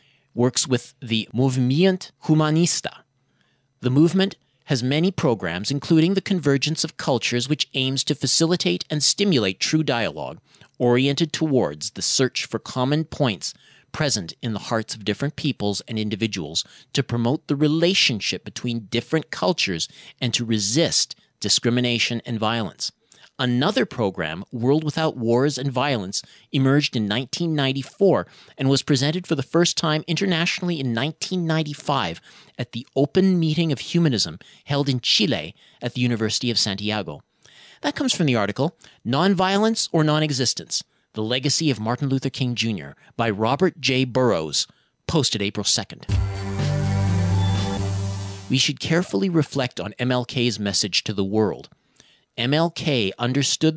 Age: 40-59